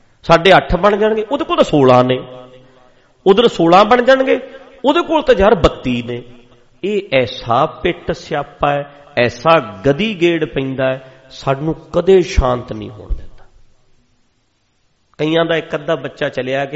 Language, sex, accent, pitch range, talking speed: English, male, Indian, 115-160 Hz, 105 wpm